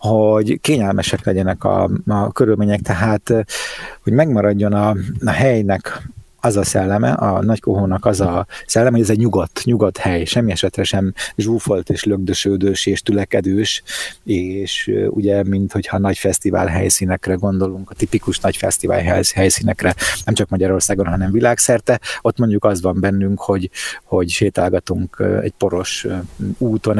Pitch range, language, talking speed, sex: 95-110 Hz, Hungarian, 140 wpm, male